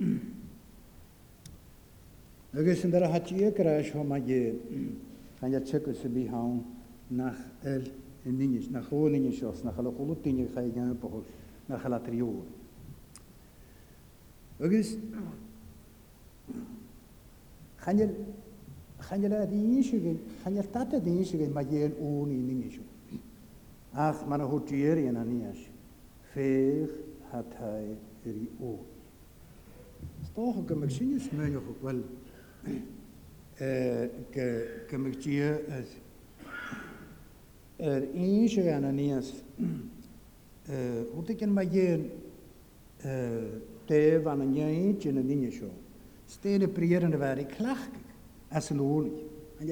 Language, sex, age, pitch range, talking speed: English, male, 60-79, 125-165 Hz, 50 wpm